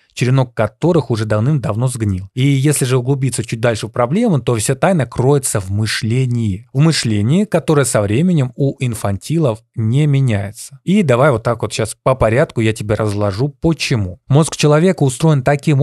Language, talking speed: Russian, 165 wpm